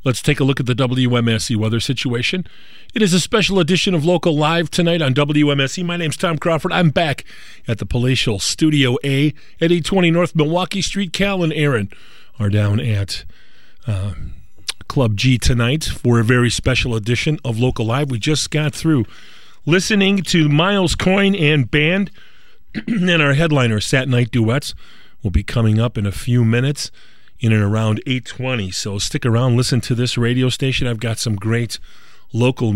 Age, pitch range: 40-59, 115-160 Hz